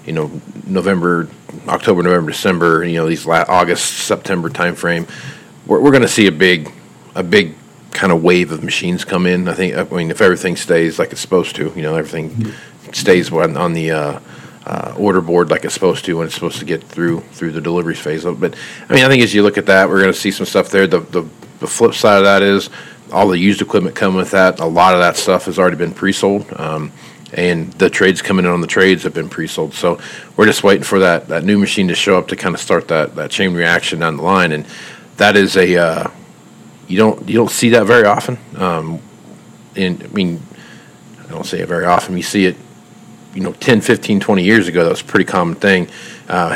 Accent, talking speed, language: American, 235 wpm, English